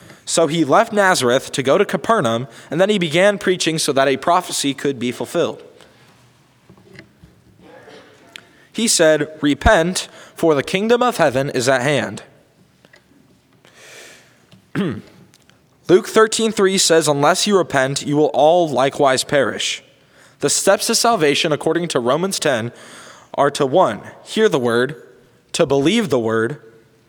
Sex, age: male, 20-39